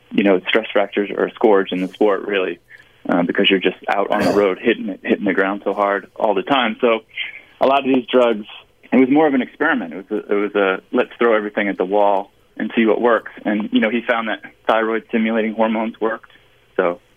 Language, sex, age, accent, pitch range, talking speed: English, male, 20-39, American, 100-120 Hz, 235 wpm